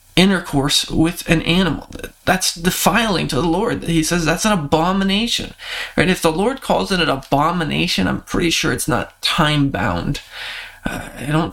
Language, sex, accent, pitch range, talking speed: English, male, American, 150-200 Hz, 160 wpm